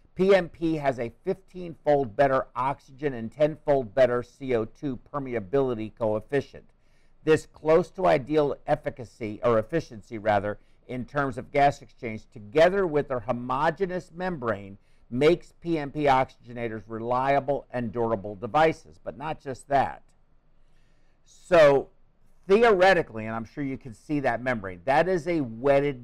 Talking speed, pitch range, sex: 125 wpm, 115-150 Hz, male